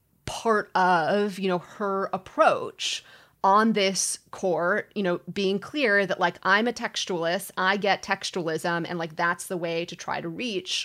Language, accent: English, American